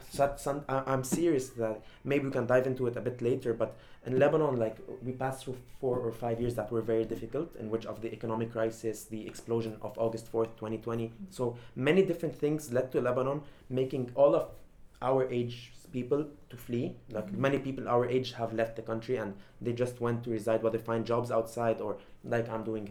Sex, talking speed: male, 205 wpm